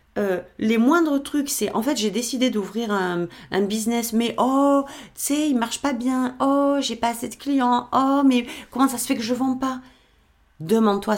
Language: French